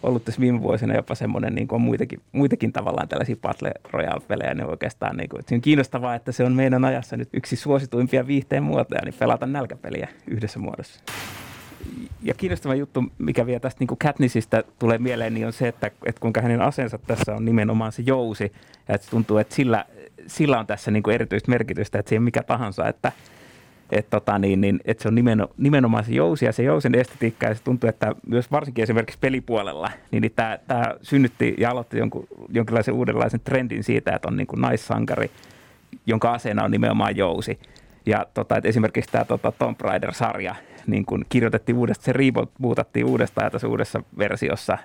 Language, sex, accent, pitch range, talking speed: Finnish, male, native, 110-130 Hz, 185 wpm